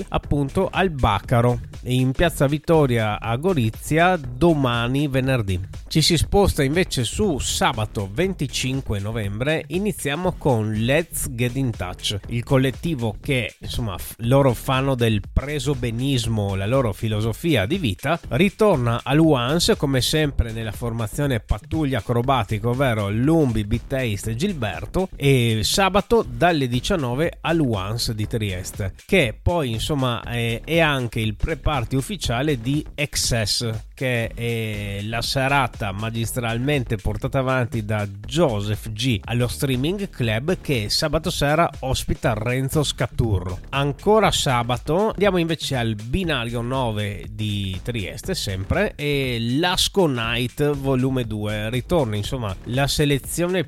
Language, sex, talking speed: Italian, male, 125 wpm